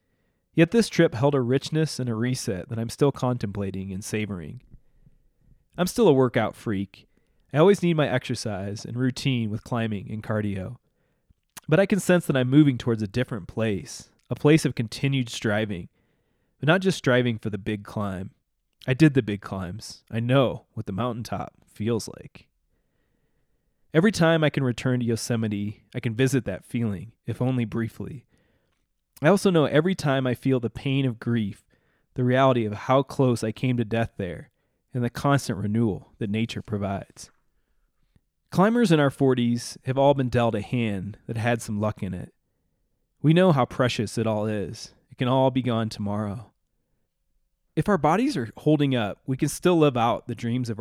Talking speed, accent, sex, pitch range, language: 180 wpm, American, male, 110-140 Hz, English